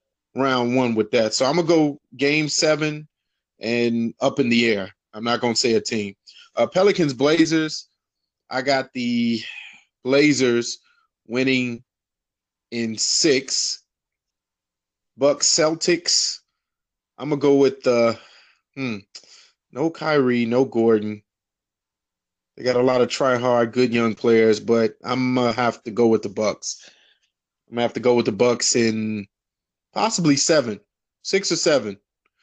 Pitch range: 115-150 Hz